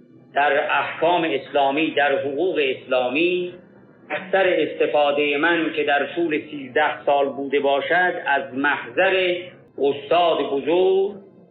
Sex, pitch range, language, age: male, 145-180 Hz, Persian, 50-69